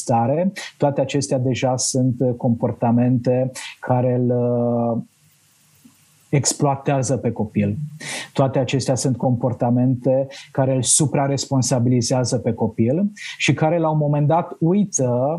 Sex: male